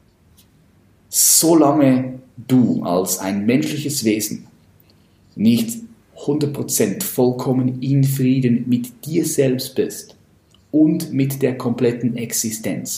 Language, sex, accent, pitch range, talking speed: German, male, German, 105-140 Hz, 90 wpm